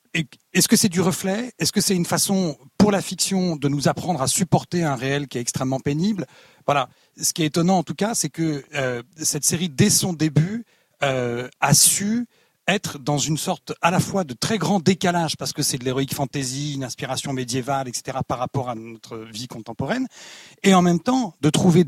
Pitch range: 135-185 Hz